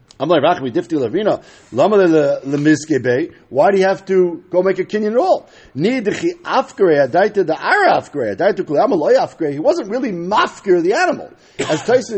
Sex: male